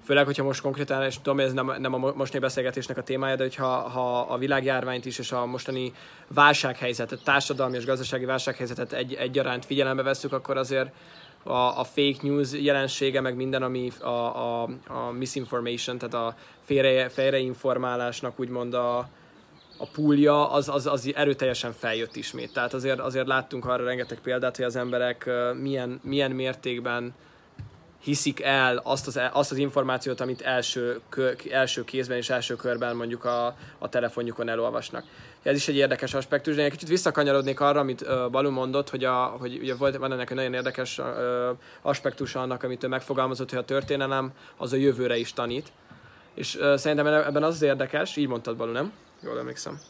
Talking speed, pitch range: 165 wpm, 125-140 Hz